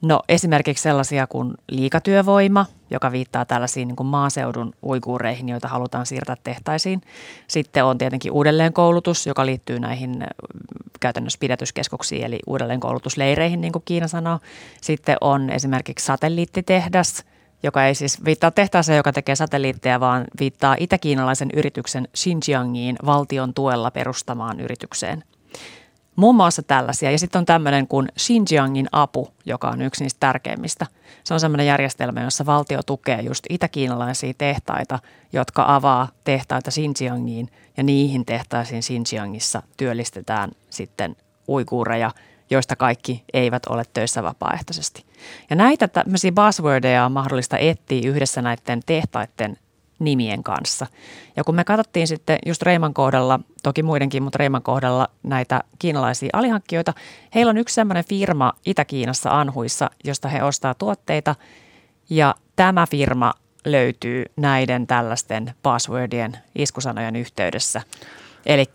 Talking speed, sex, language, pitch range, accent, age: 125 wpm, female, Finnish, 125-155 Hz, native, 30-49